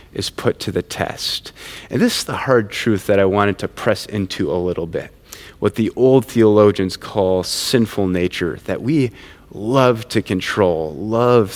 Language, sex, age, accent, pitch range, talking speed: English, male, 30-49, American, 90-120 Hz, 170 wpm